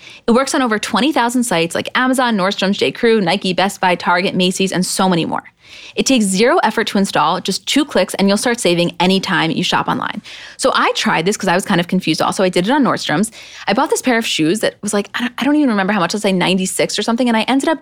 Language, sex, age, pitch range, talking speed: English, female, 20-39, 175-235 Hz, 265 wpm